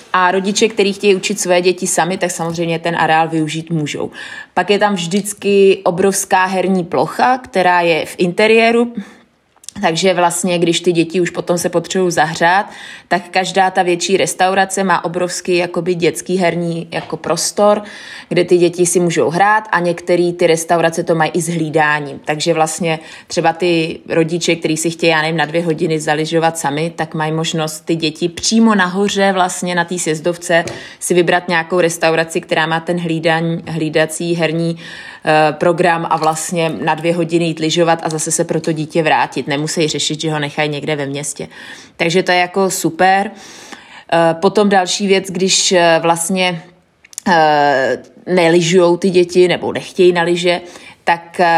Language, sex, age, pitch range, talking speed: Czech, female, 20-39, 160-185 Hz, 155 wpm